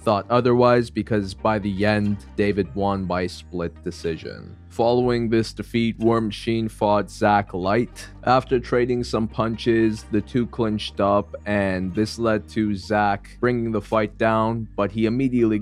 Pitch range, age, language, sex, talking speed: 100-115 Hz, 20-39, English, male, 150 wpm